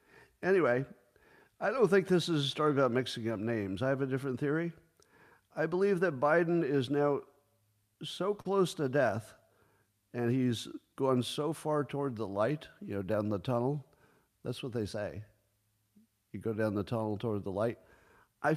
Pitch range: 115-155 Hz